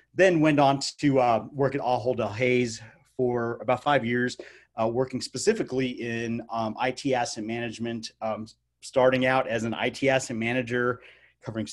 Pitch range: 115-140 Hz